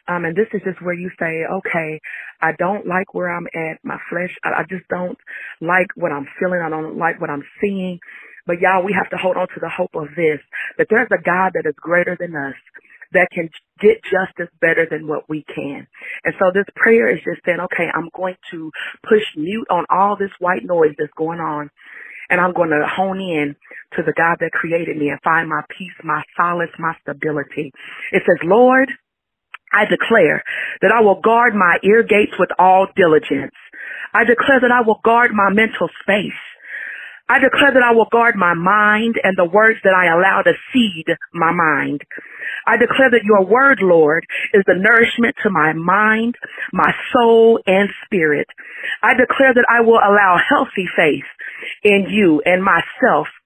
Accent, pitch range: American, 165-220 Hz